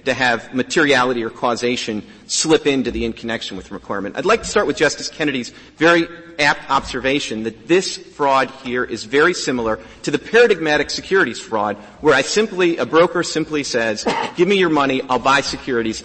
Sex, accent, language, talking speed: male, American, English, 180 wpm